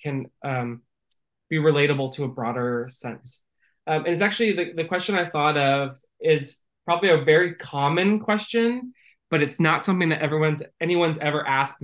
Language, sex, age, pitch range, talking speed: English, male, 20-39, 140-175 Hz, 165 wpm